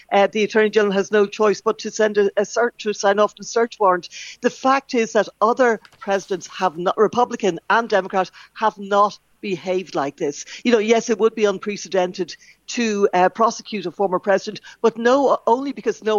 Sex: female